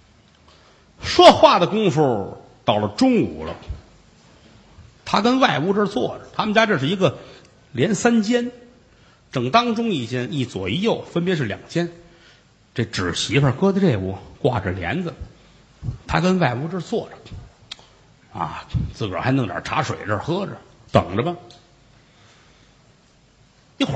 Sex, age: male, 50-69